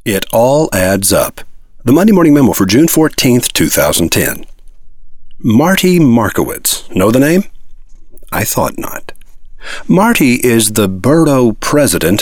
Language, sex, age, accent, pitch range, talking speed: English, male, 50-69, American, 110-160 Hz, 125 wpm